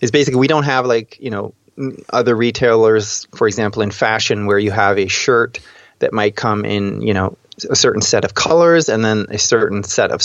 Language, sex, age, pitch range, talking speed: English, male, 30-49, 105-125 Hz, 210 wpm